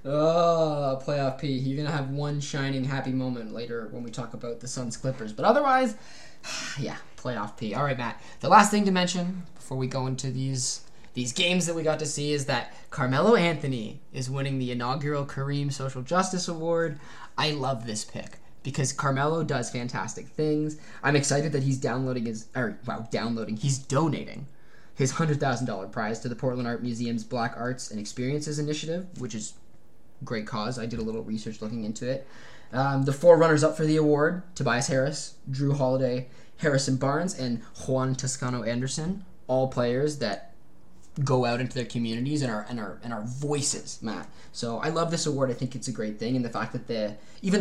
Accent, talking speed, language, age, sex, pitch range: American, 195 wpm, English, 20-39, male, 120-150 Hz